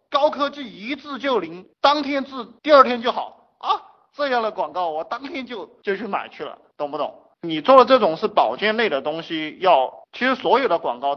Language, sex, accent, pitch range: Chinese, male, native, 170-265 Hz